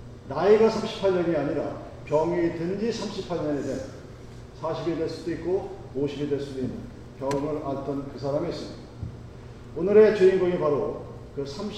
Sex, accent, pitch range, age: male, native, 140-195 Hz, 40-59